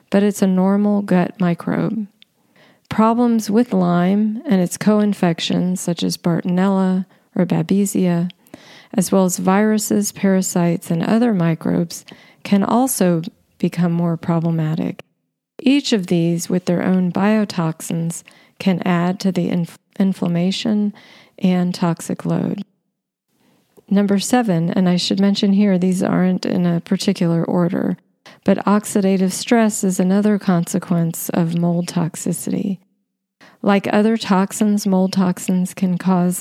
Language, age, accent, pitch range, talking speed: English, 40-59, American, 175-205 Hz, 120 wpm